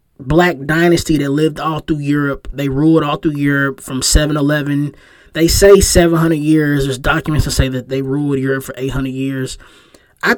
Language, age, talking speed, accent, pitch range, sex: English, 20-39, 190 wpm, American, 135-160 Hz, male